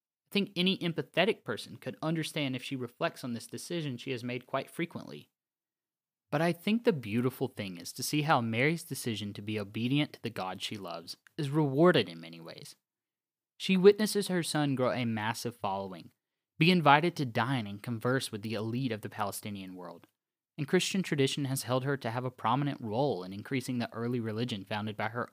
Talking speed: 195 wpm